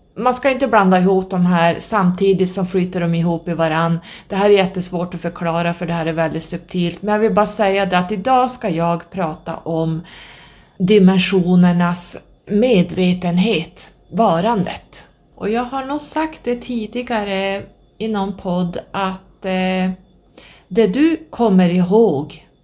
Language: Swedish